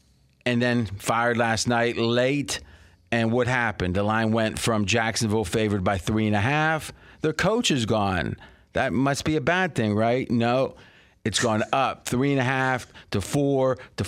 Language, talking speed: English, 180 wpm